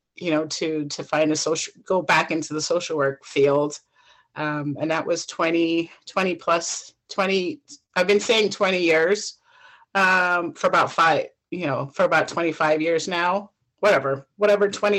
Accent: American